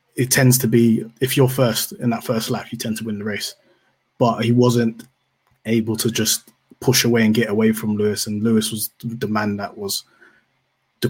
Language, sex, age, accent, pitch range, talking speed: English, male, 20-39, British, 105-125 Hz, 205 wpm